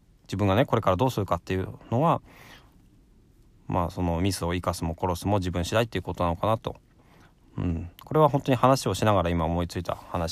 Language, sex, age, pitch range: Japanese, male, 20-39, 90-115 Hz